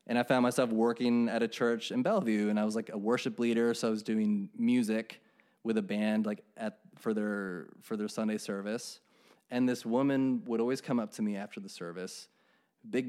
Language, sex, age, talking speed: English, male, 20-39, 210 wpm